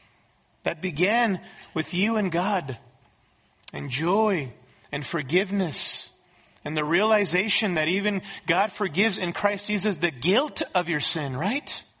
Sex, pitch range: male, 155-210 Hz